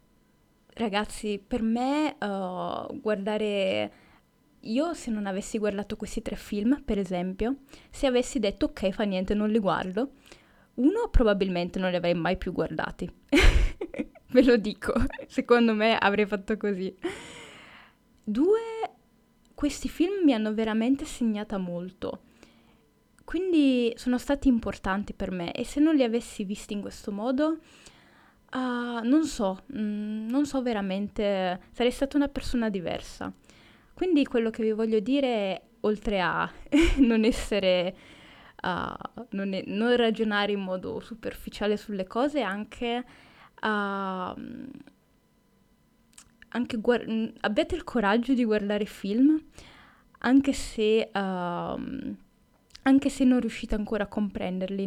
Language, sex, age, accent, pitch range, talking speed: Italian, female, 20-39, native, 205-260 Hz, 125 wpm